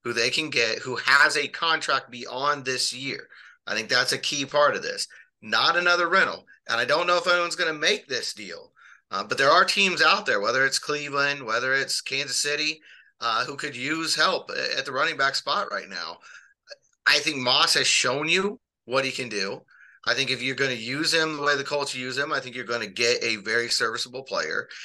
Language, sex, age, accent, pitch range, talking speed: English, male, 30-49, American, 125-155 Hz, 225 wpm